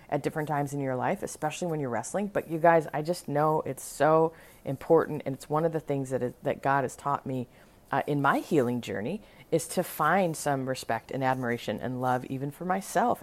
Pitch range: 140-185 Hz